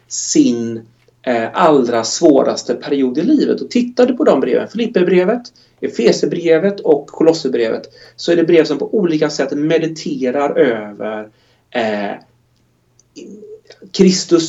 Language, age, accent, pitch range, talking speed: Swedish, 30-49, native, 125-170 Hz, 115 wpm